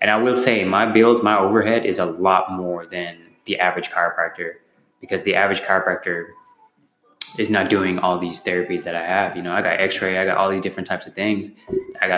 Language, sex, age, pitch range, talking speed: English, male, 20-39, 90-110 Hz, 215 wpm